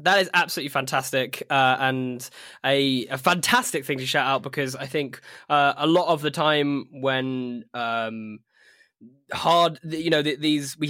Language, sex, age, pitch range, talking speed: English, male, 10-29, 135-175 Hz, 165 wpm